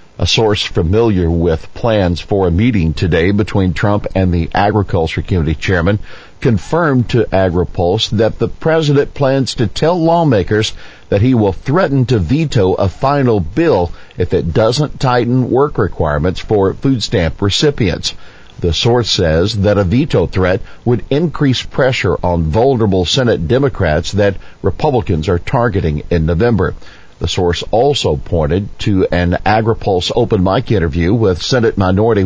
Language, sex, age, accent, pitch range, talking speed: English, male, 50-69, American, 90-125 Hz, 145 wpm